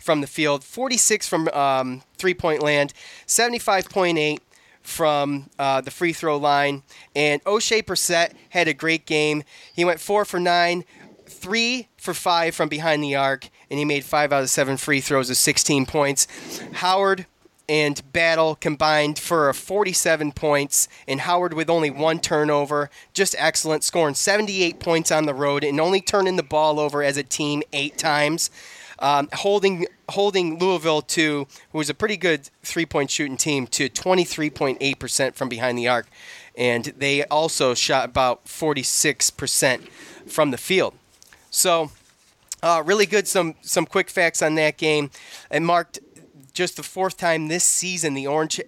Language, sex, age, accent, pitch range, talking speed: English, male, 20-39, American, 145-175 Hz, 160 wpm